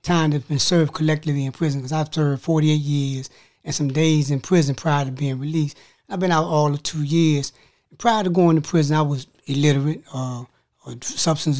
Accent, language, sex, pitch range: American, English, male, 135-160 Hz